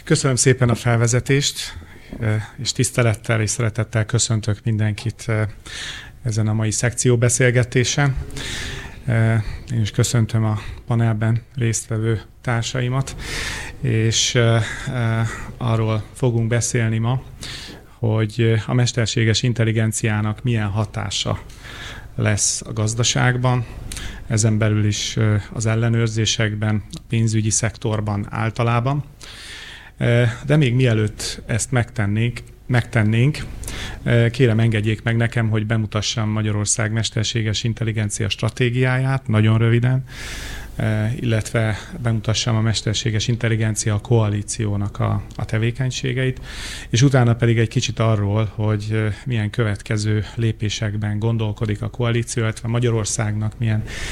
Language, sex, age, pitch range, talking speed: Hungarian, male, 30-49, 110-120 Hz, 100 wpm